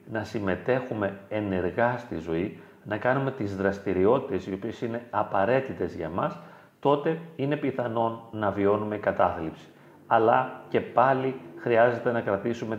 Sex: male